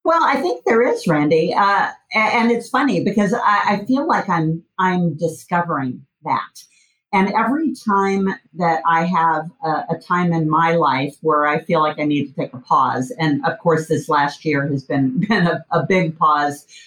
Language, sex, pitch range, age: English, female, 150-185 Hz, 50-69